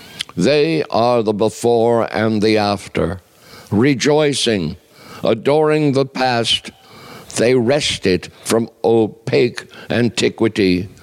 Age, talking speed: 60-79, 90 wpm